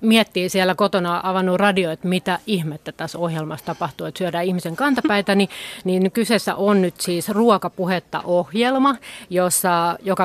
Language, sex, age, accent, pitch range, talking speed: Finnish, female, 30-49, native, 170-205 Hz, 145 wpm